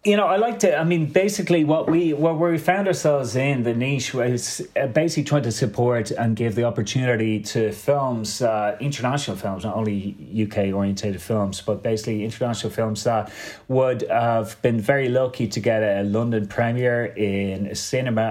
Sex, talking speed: male, 180 wpm